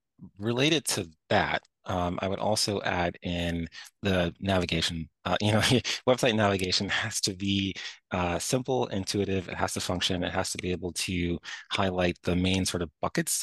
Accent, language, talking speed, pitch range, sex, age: American, English, 170 wpm, 85-100 Hz, male, 20-39